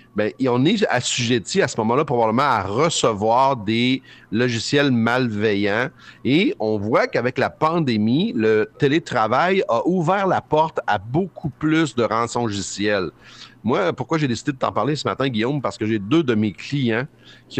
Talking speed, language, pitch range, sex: 165 wpm, French, 110-140 Hz, male